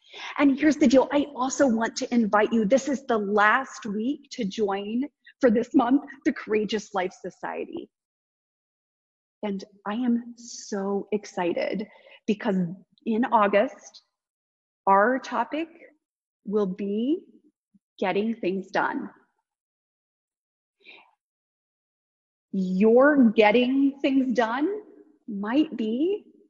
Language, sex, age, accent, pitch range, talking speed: English, female, 30-49, American, 215-285 Hz, 100 wpm